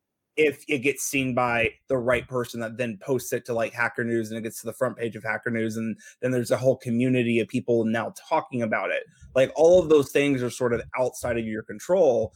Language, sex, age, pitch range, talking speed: English, male, 20-39, 115-140 Hz, 245 wpm